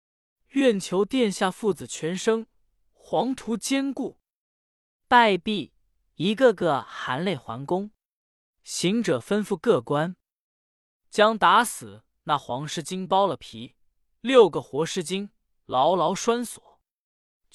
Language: Chinese